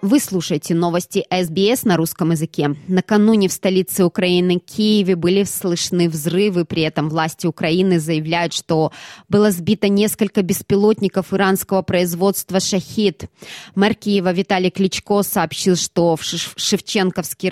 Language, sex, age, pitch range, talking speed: Russian, female, 20-39, 155-190 Hz, 125 wpm